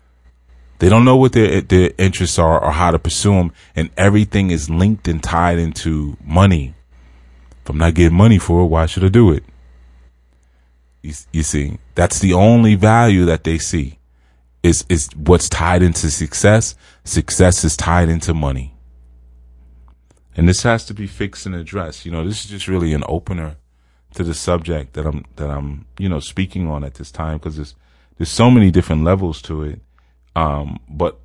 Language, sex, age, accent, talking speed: English, male, 30-49, American, 180 wpm